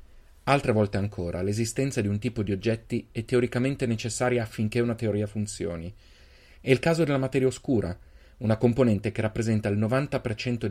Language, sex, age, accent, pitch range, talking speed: Italian, male, 30-49, native, 100-125 Hz, 155 wpm